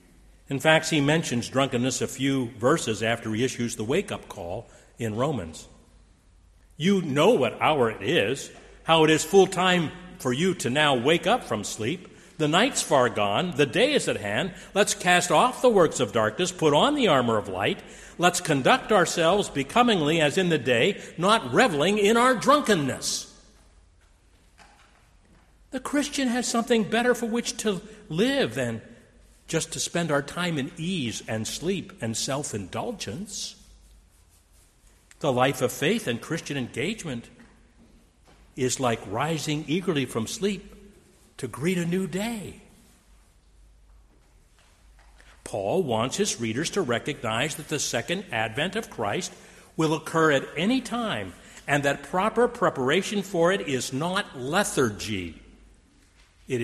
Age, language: 60-79, English